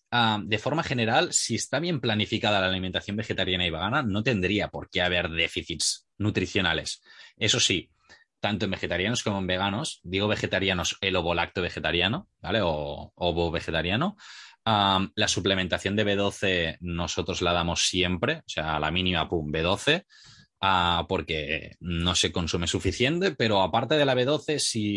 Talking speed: 155 wpm